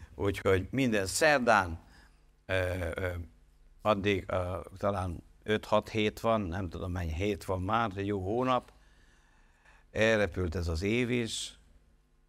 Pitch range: 85-115 Hz